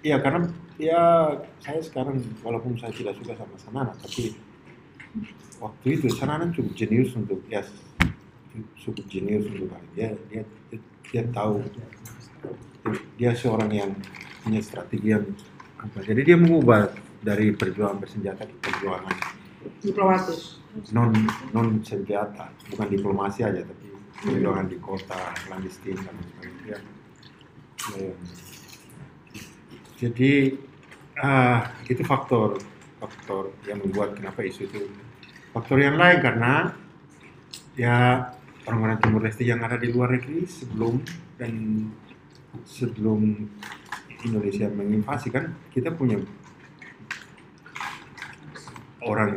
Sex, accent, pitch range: male, native, 105-135 Hz